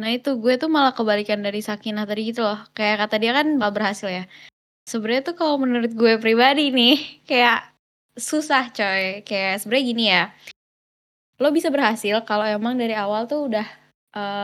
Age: 10-29